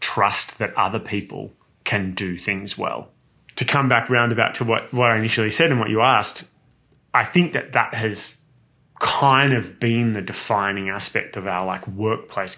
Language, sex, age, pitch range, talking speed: English, male, 20-39, 105-125 Hz, 175 wpm